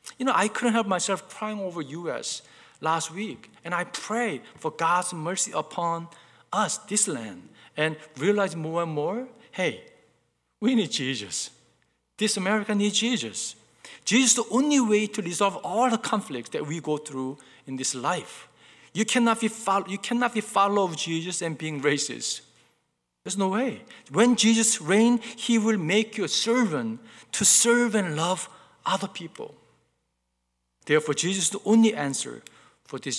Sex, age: male, 50-69